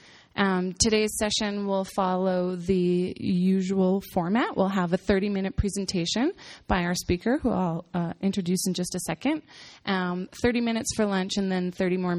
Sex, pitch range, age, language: female, 175-200 Hz, 20-39, English